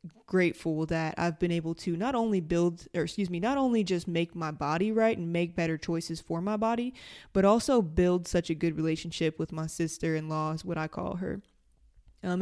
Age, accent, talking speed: 20-39, American, 205 wpm